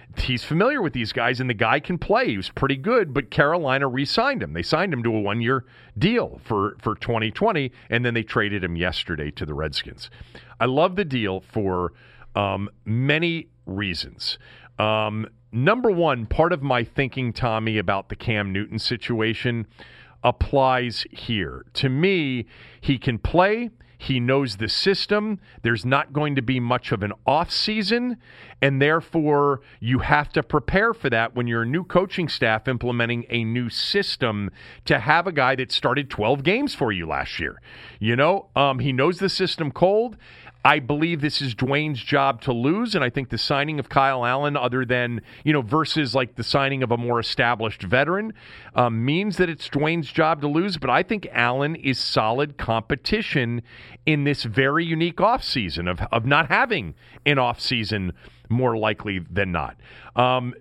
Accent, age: American, 40-59